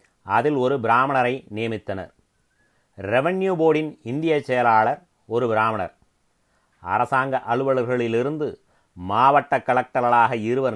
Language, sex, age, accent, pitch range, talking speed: Tamil, male, 30-49, native, 115-135 Hz, 85 wpm